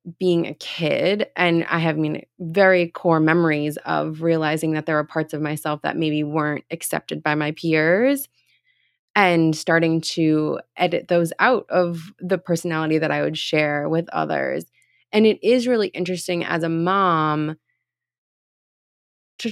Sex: female